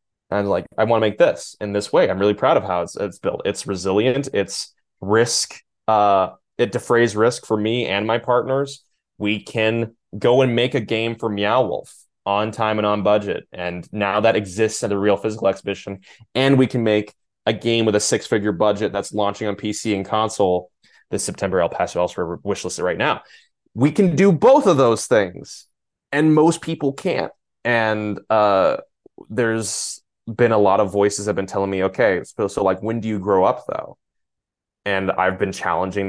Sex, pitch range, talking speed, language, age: male, 95-115 Hz, 200 wpm, English, 20-39